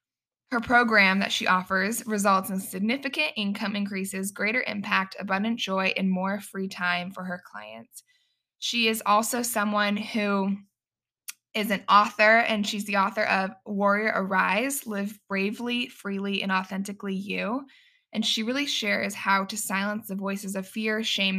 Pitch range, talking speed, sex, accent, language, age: 190-220 Hz, 150 wpm, female, American, English, 20-39